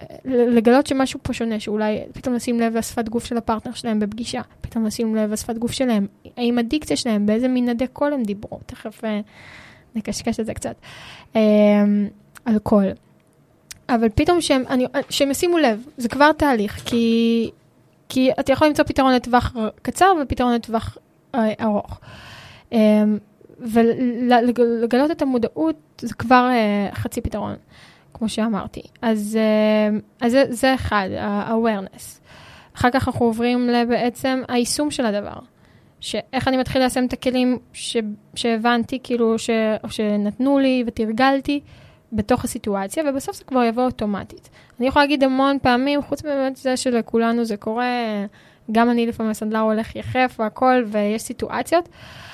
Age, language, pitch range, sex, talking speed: 10-29, Hebrew, 220-255 Hz, female, 135 wpm